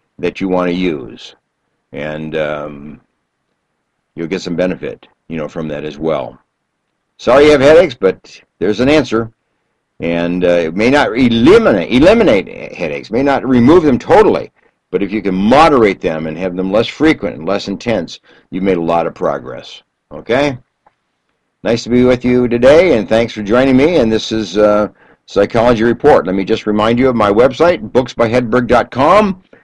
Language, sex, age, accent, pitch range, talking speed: English, male, 60-79, American, 90-130 Hz, 170 wpm